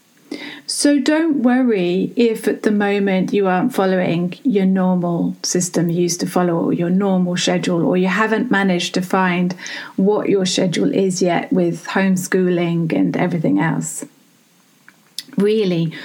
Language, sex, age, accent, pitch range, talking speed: English, female, 30-49, British, 185-240 Hz, 140 wpm